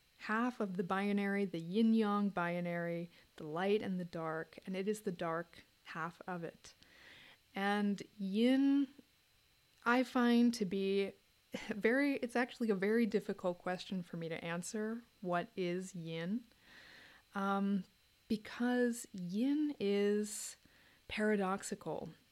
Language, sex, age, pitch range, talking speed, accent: English, female, 30-49, 180-230 Hz, 120 wpm, American